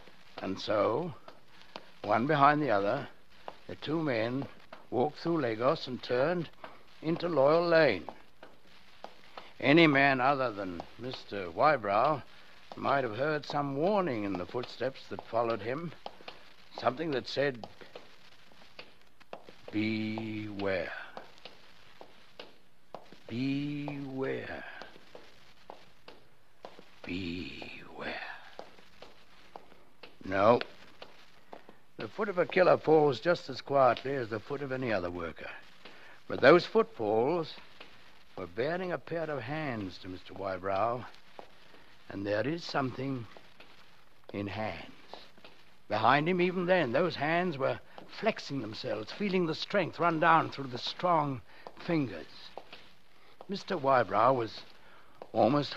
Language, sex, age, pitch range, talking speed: English, male, 60-79, 110-165 Hz, 105 wpm